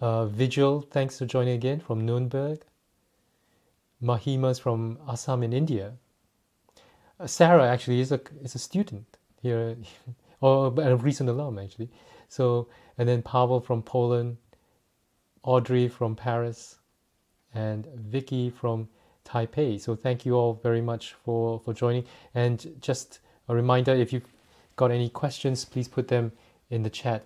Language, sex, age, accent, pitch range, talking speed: English, male, 30-49, Japanese, 115-135 Hz, 140 wpm